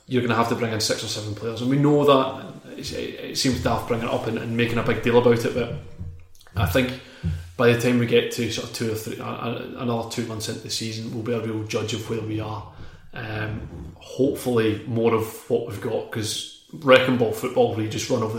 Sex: male